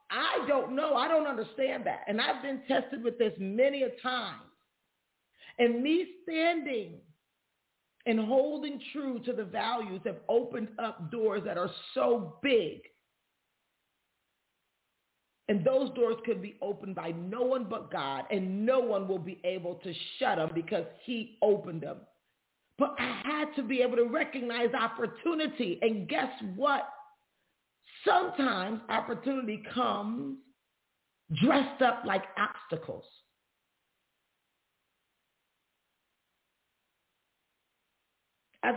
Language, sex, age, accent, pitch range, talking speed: English, female, 40-59, American, 220-280 Hz, 120 wpm